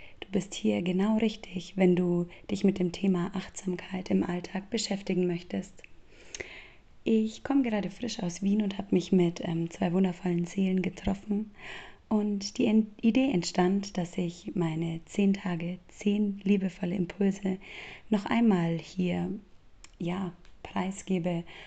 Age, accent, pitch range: 30-49, German, 180-210 Hz